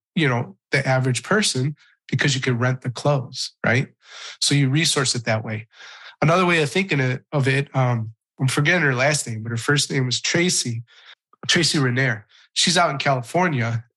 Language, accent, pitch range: English, American, 125-150 Hz